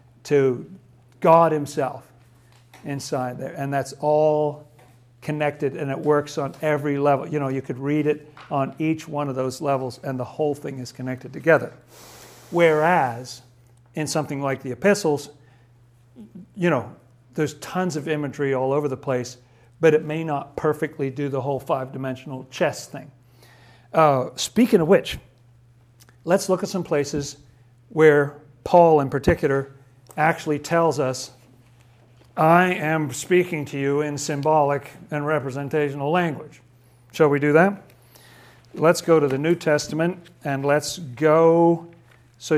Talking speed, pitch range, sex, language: 140 wpm, 130-155 Hz, male, English